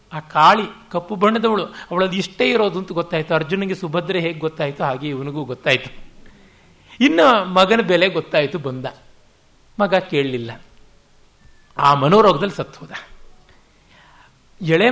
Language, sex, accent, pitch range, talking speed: Kannada, male, native, 140-205 Hz, 110 wpm